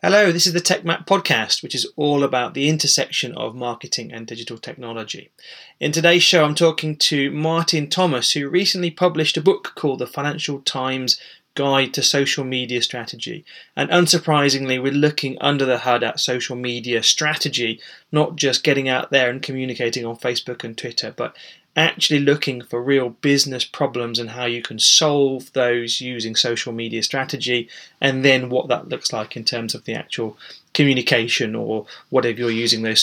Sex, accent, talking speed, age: male, British, 175 wpm, 20-39